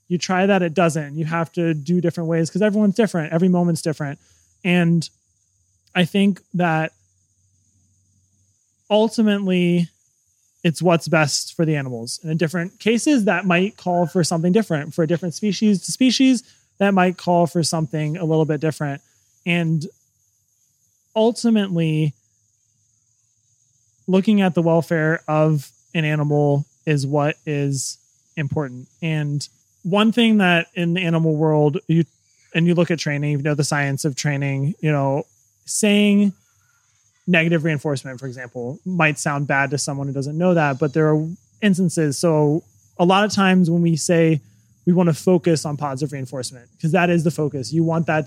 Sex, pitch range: male, 140-175 Hz